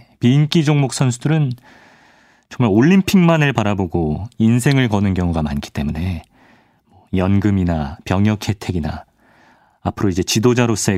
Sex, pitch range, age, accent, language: male, 95-135 Hz, 40-59, native, Korean